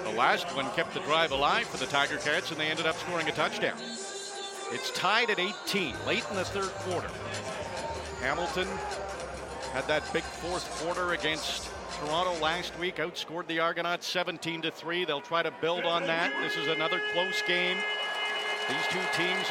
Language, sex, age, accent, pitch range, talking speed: English, male, 50-69, American, 195-315 Hz, 175 wpm